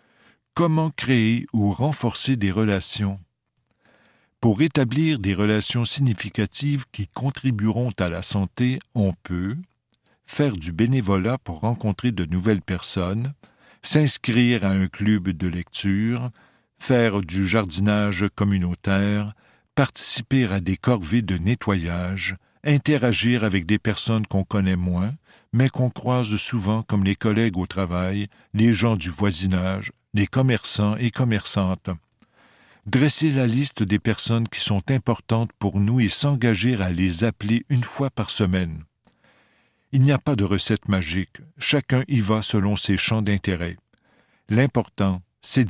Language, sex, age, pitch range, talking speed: French, male, 60-79, 95-125 Hz, 135 wpm